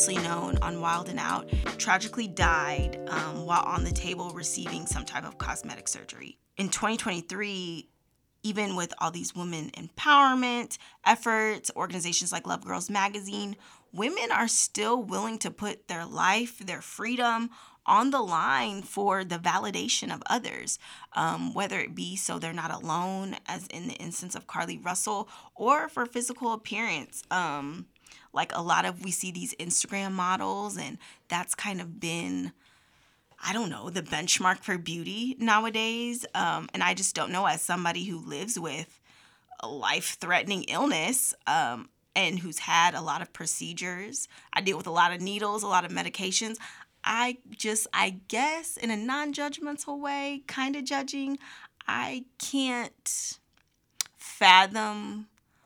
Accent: American